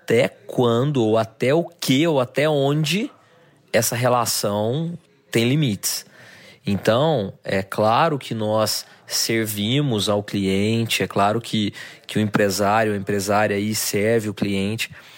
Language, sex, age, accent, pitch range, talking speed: Portuguese, male, 20-39, Brazilian, 110-160 Hz, 125 wpm